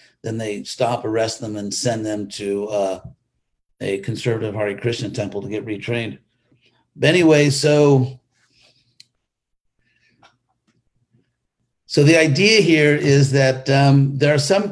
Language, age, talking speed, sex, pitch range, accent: English, 50-69, 125 wpm, male, 115-140 Hz, American